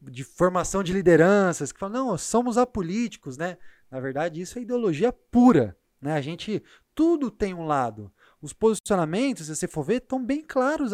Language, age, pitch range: Portuguese, 20-39, 145-215 Hz